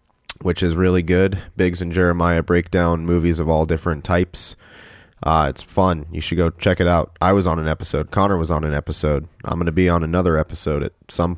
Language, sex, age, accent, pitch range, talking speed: English, male, 30-49, American, 85-100 Hz, 215 wpm